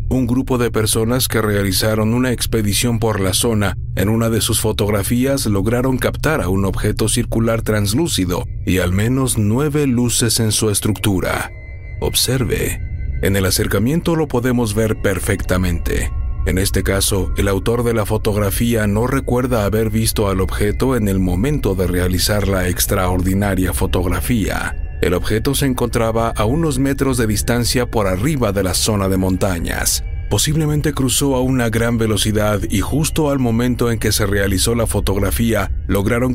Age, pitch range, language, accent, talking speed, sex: 50-69, 100-120 Hz, English, Mexican, 155 wpm, male